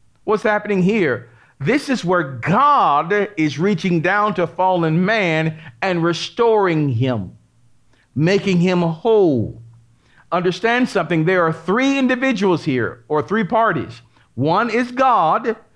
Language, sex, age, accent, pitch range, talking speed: English, male, 40-59, American, 150-215 Hz, 120 wpm